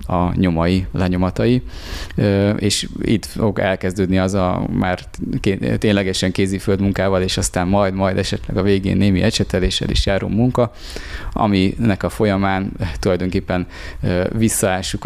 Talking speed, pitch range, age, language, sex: 120 wpm, 90-105 Hz, 20-39, Hungarian, male